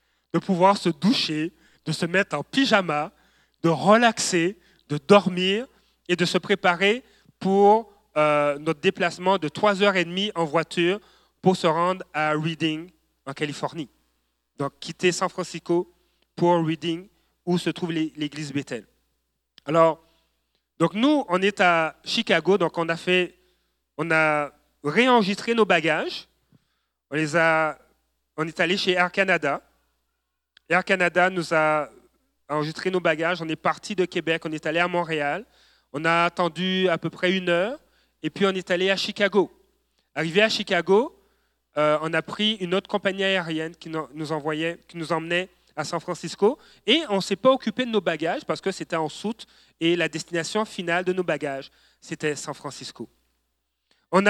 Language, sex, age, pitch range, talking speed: French, male, 30-49, 155-195 Hz, 160 wpm